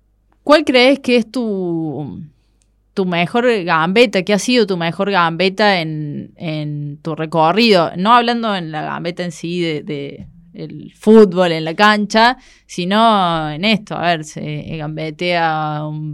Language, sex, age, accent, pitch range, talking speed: Spanish, female, 20-39, Argentinian, 155-200 Hz, 145 wpm